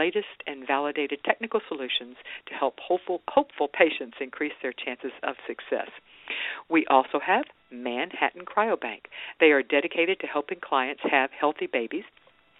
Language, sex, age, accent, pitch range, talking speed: English, female, 50-69, American, 130-190 Hz, 140 wpm